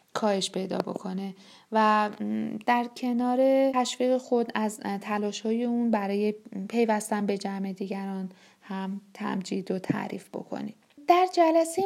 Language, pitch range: Persian, 200-240 Hz